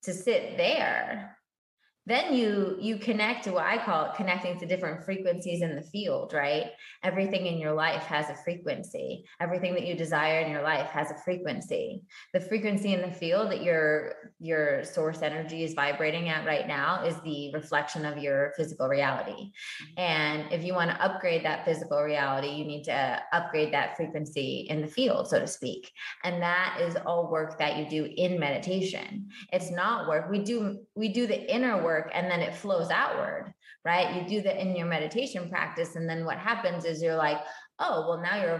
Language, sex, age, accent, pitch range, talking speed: English, female, 20-39, American, 155-185 Hz, 195 wpm